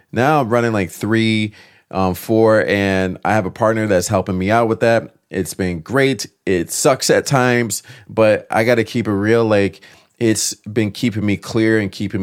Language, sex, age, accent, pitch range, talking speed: English, male, 30-49, American, 95-115 Hz, 195 wpm